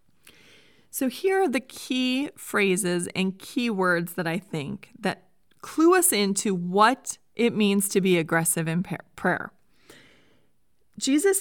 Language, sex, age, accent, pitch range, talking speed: English, female, 30-49, American, 185-270 Hz, 130 wpm